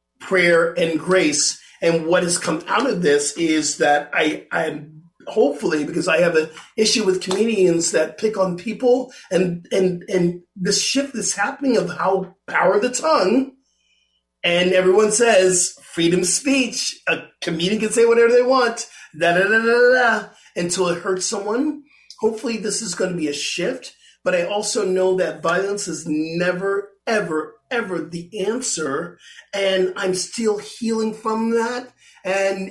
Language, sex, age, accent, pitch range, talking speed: English, male, 40-59, American, 175-225 Hz, 160 wpm